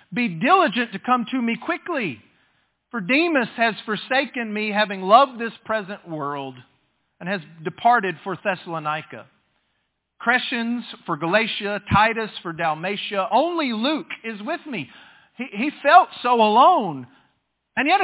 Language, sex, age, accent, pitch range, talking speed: English, male, 40-59, American, 190-265 Hz, 135 wpm